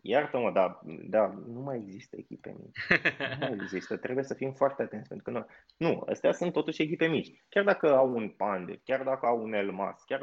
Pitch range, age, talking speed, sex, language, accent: 120-150 Hz, 20-39, 215 wpm, male, Romanian, native